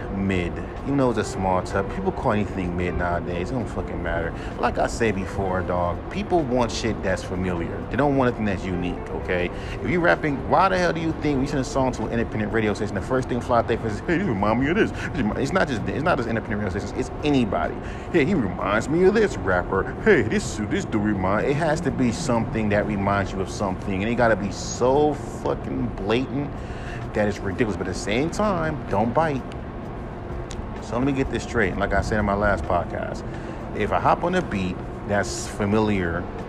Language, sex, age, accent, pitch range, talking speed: English, male, 30-49, American, 95-120 Hz, 225 wpm